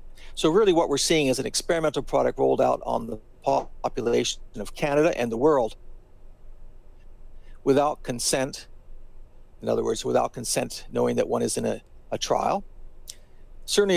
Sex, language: male, English